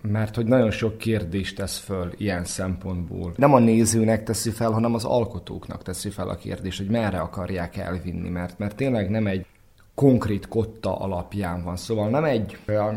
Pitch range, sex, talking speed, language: 100-115 Hz, male, 170 wpm, Hungarian